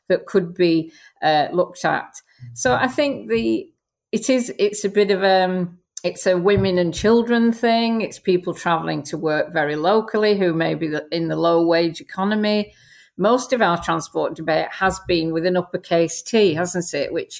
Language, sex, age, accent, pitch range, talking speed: English, female, 50-69, British, 170-205 Hz, 180 wpm